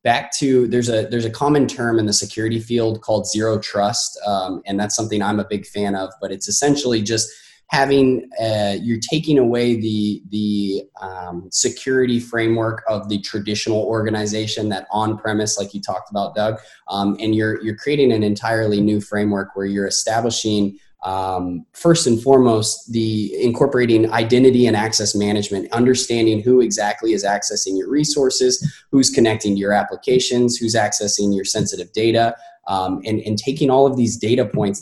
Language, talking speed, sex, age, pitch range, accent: English, 170 wpm, male, 20-39, 105-120 Hz, American